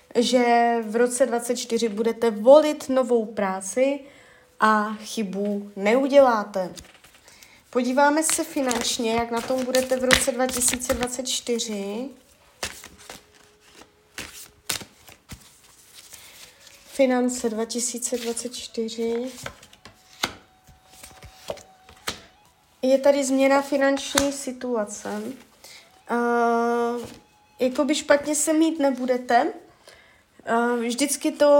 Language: Czech